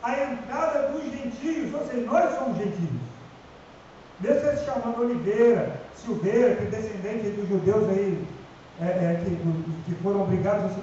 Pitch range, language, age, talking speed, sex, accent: 180-260 Hz, Portuguese, 40-59, 155 wpm, male, Brazilian